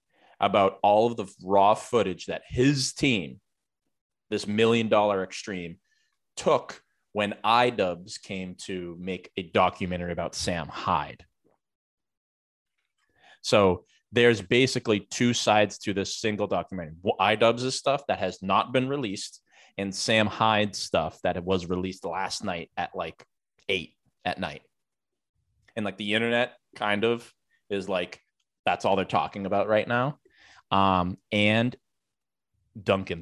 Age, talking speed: 20-39, 130 wpm